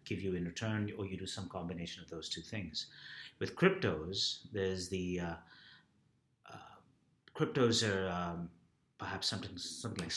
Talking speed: 155 wpm